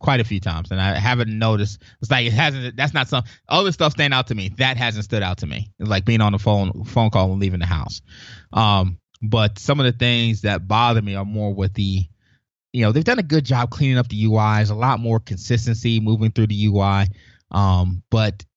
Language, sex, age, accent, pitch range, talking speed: English, male, 20-39, American, 100-125 Hz, 235 wpm